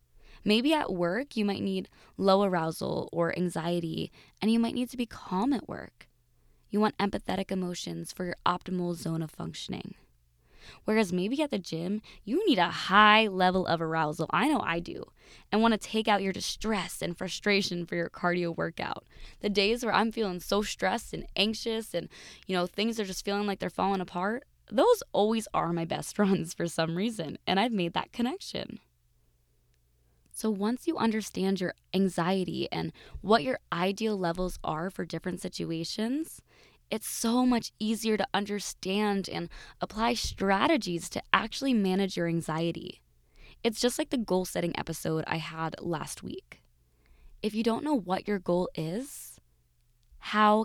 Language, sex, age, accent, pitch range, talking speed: English, female, 20-39, American, 170-220 Hz, 165 wpm